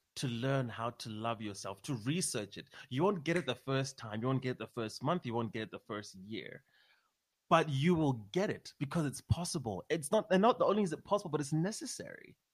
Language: English